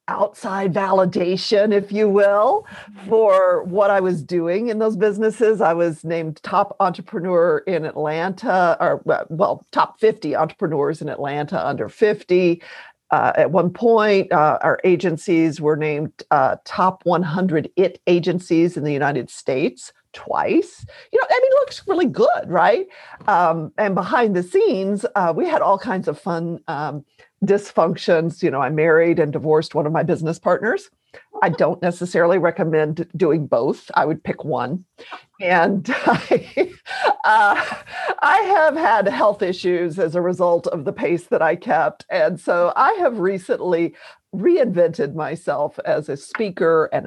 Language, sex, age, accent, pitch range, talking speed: English, female, 50-69, American, 160-205 Hz, 150 wpm